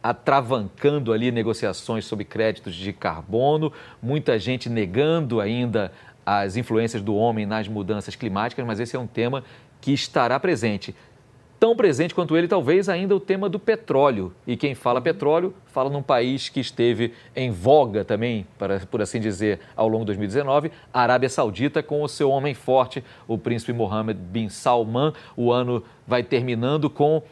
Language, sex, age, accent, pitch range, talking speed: Portuguese, male, 40-59, Brazilian, 115-155 Hz, 160 wpm